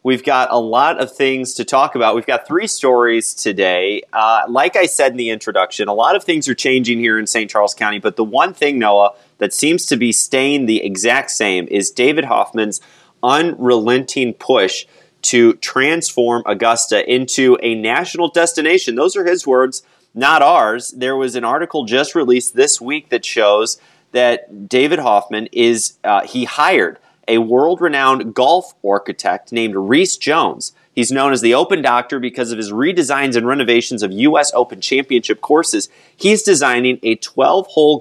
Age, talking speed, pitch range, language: 30-49, 170 wpm, 115-140 Hz, English